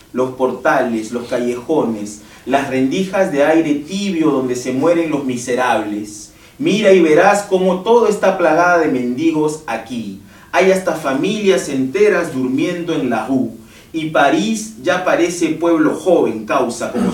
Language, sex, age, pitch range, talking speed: French, male, 40-59, 130-190 Hz, 140 wpm